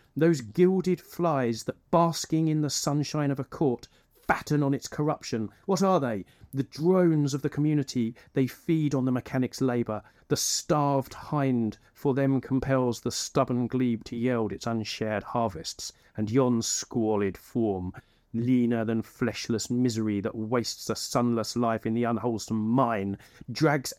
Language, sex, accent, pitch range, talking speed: English, male, British, 110-140 Hz, 155 wpm